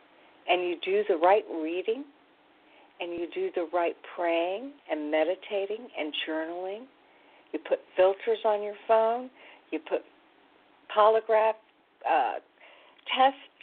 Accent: American